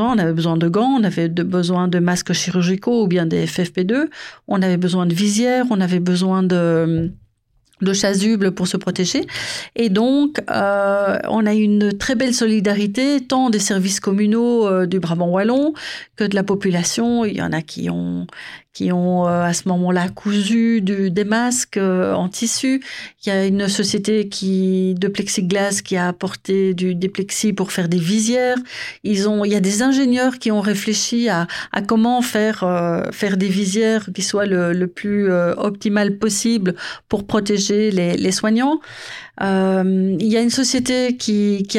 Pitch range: 185-220 Hz